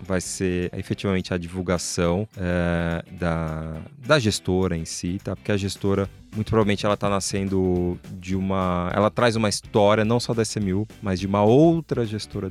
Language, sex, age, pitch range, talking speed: Portuguese, male, 20-39, 90-105 Hz, 170 wpm